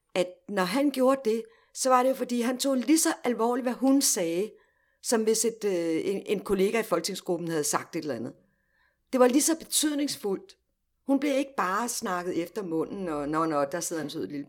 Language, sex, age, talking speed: Danish, female, 60-79, 215 wpm